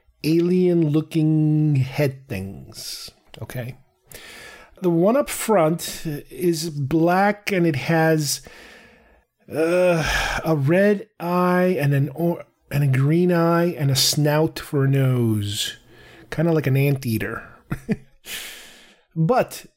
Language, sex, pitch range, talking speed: English, male, 145-180 Hz, 110 wpm